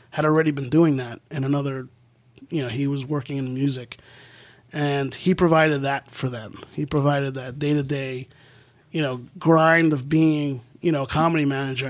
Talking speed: 180 wpm